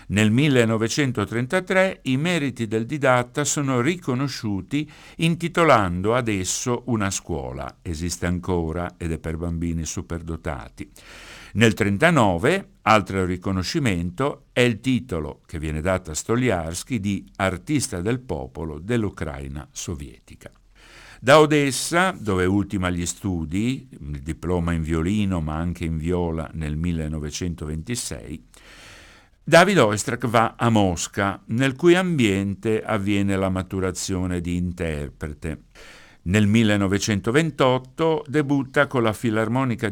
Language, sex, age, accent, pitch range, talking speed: Italian, male, 60-79, native, 85-120 Hz, 110 wpm